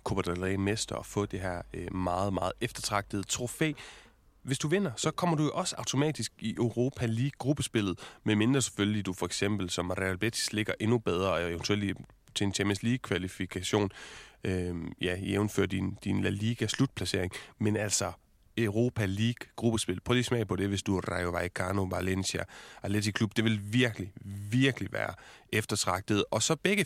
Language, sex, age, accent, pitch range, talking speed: Danish, male, 30-49, native, 100-125 Hz, 160 wpm